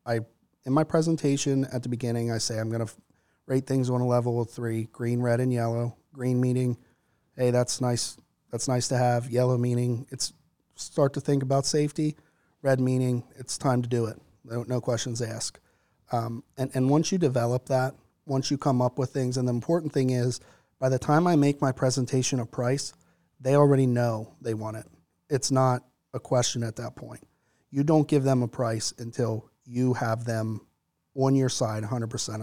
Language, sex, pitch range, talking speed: English, male, 115-135 Hz, 195 wpm